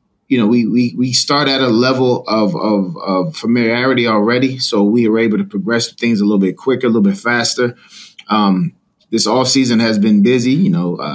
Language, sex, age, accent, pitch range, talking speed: English, male, 20-39, American, 105-130 Hz, 205 wpm